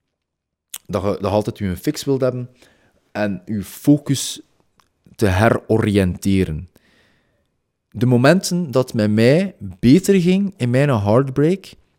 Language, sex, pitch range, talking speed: Dutch, male, 105-150 Hz, 125 wpm